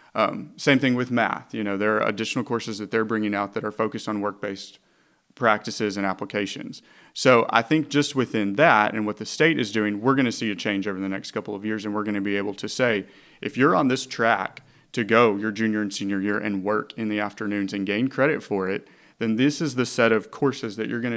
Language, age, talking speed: English, 30-49, 245 wpm